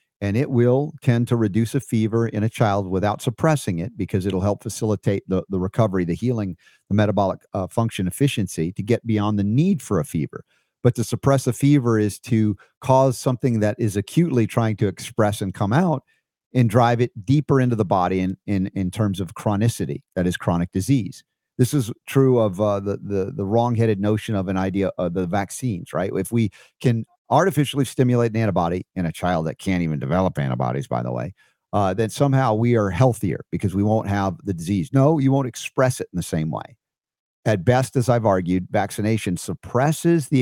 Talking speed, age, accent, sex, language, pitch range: 200 wpm, 50-69, American, male, English, 95-125 Hz